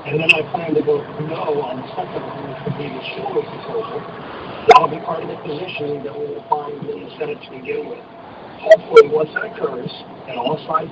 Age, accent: 50-69, American